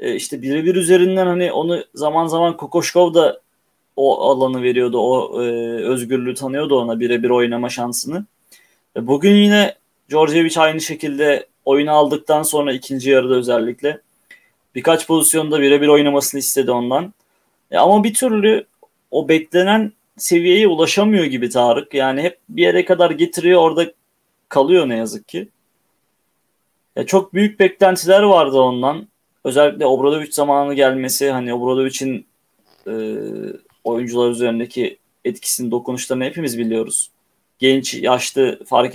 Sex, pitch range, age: male, 125-180 Hz, 30-49